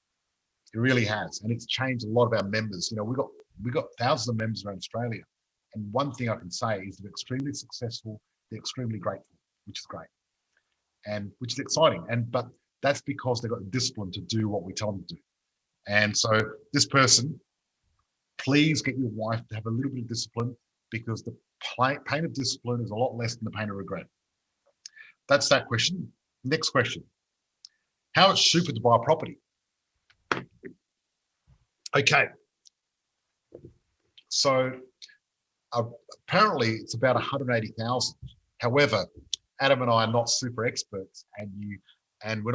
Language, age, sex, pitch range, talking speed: English, 50-69, male, 110-130 Hz, 165 wpm